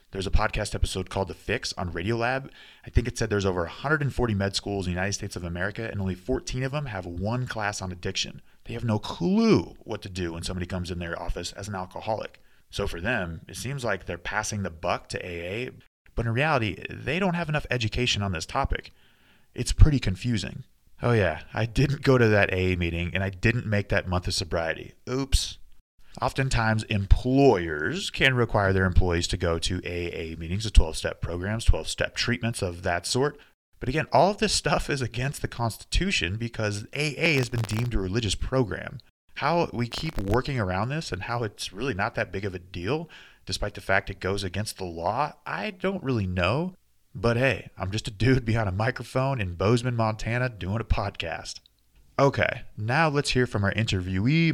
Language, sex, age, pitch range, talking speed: English, male, 30-49, 95-125 Hz, 200 wpm